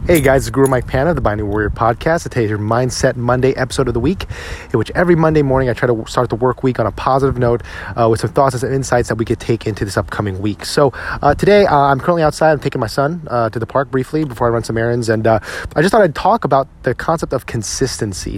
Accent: American